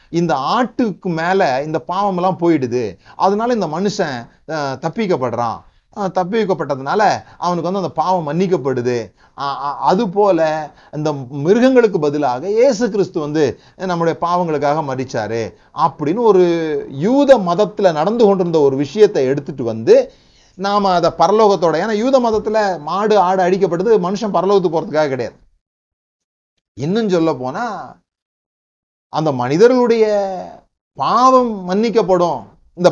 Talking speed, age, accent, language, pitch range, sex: 105 wpm, 30-49, native, Tamil, 140-200 Hz, male